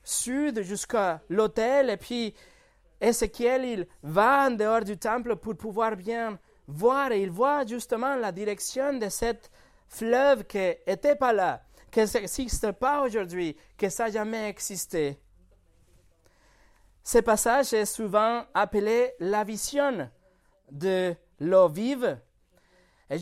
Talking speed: 125 wpm